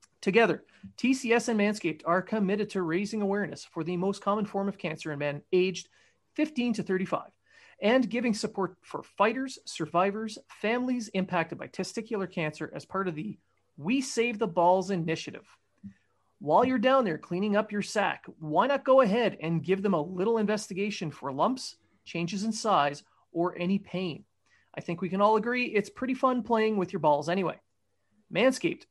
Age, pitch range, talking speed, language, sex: 30-49, 170-220 Hz, 170 wpm, English, male